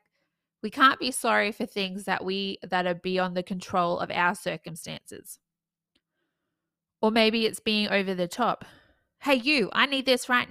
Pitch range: 175-220 Hz